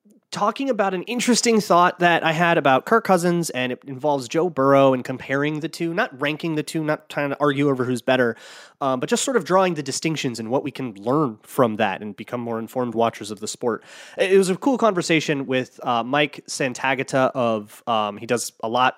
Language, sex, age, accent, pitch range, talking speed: English, male, 30-49, American, 120-160 Hz, 220 wpm